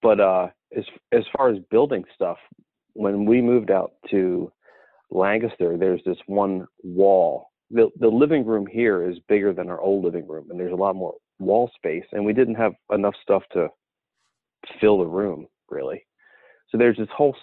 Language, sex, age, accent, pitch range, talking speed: English, male, 30-49, American, 95-130 Hz, 180 wpm